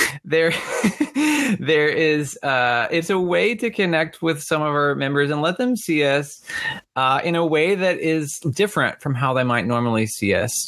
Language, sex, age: English, male, 20-39